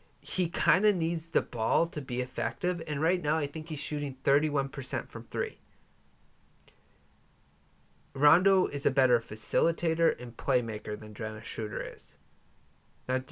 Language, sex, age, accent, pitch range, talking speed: English, male, 30-49, American, 125-160 Hz, 140 wpm